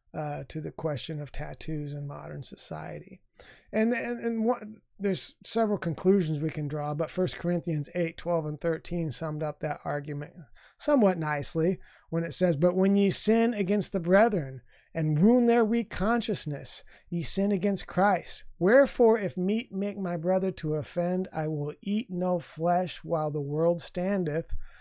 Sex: male